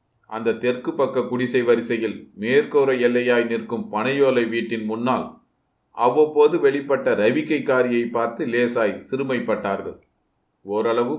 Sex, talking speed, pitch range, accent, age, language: male, 100 wpm, 115-135 Hz, native, 30-49, Tamil